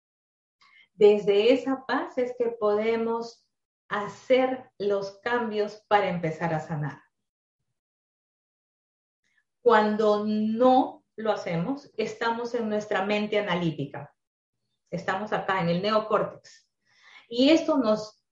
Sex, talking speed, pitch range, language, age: female, 100 wpm, 190-245 Hz, Spanish, 30-49